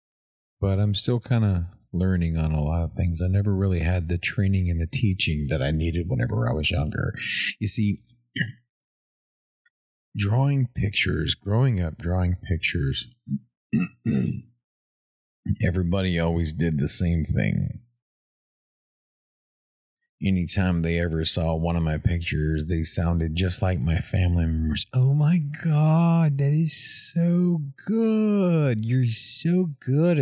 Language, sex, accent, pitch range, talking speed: English, male, American, 85-110 Hz, 130 wpm